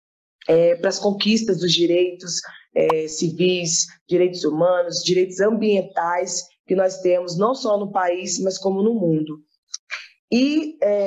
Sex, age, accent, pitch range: female, 20-39, Brazilian, 170-210 Hz